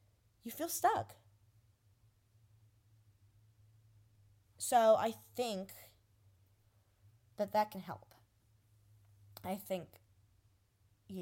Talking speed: 70 wpm